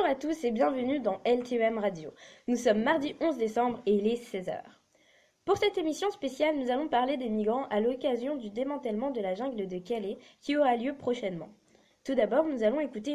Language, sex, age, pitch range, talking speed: French, female, 20-39, 225-305 Hz, 200 wpm